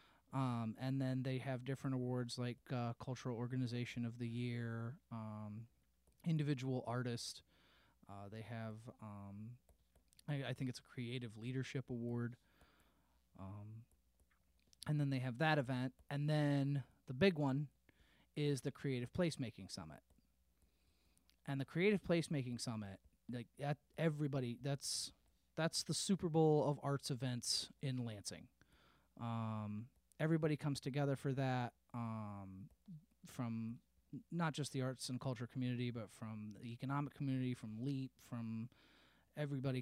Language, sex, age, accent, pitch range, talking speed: English, male, 30-49, American, 115-140 Hz, 135 wpm